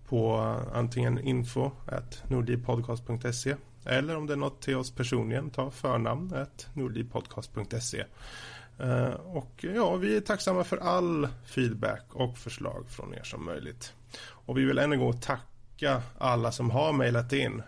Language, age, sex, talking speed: Swedish, 30-49, male, 135 wpm